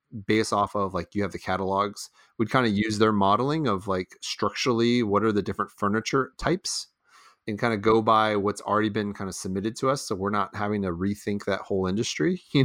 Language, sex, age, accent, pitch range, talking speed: English, male, 30-49, American, 90-110 Hz, 220 wpm